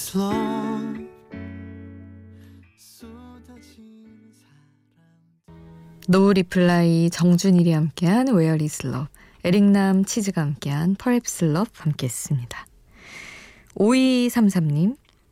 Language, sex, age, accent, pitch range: Korean, female, 20-39, native, 150-215 Hz